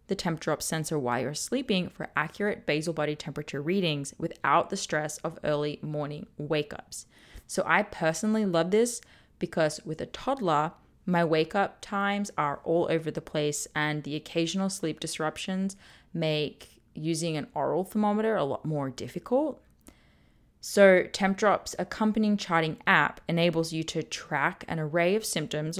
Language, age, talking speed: English, 20-39, 150 wpm